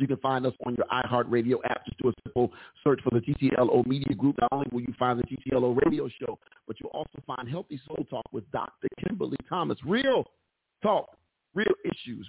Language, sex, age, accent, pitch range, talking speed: English, male, 40-59, American, 120-135 Hz, 205 wpm